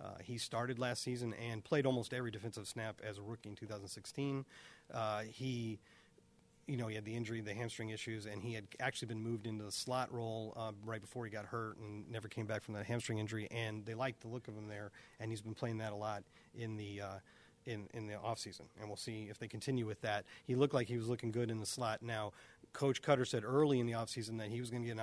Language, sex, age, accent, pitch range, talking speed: English, male, 40-59, American, 105-120 Hz, 255 wpm